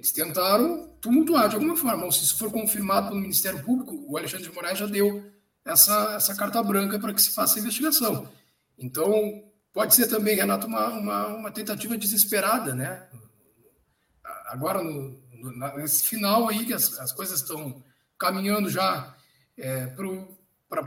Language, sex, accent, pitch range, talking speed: Portuguese, male, Brazilian, 175-230 Hz, 160 wpm